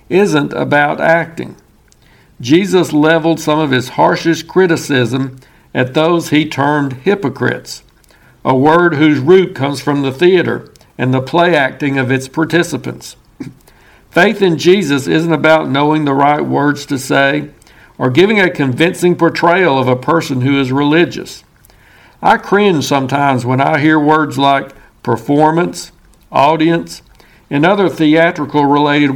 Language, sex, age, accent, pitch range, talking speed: English, male, 60-79, American, 135-170 Hz, 135 wpm